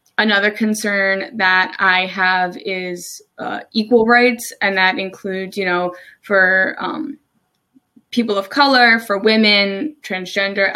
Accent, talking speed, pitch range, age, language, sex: American, 125 wpm, 190-225 Hz, 20-39, English, female